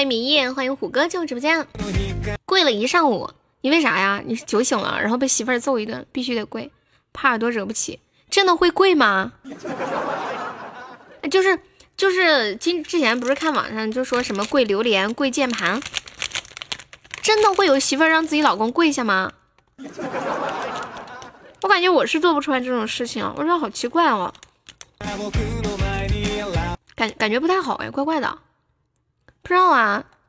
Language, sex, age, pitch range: Chinese, female, 10-29, 235-320 Hz